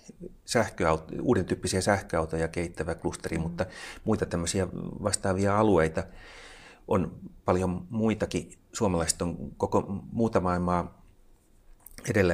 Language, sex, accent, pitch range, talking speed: Finnish, male, native, 80-95 Hz, 95 wpm